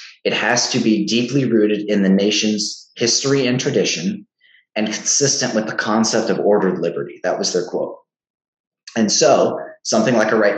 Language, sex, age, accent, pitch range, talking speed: English, male, 30-49, American, 100-125 Hz, 170 wpm